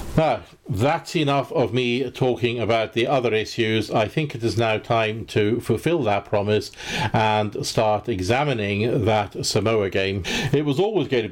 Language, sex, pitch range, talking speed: English, male, 105-125 Hz, 165 wpm